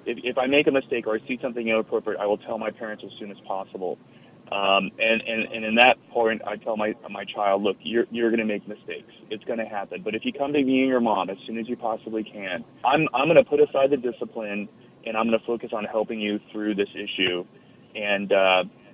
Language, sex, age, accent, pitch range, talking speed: English, male, 30-49, American, 105-120 Hz, 250 wpm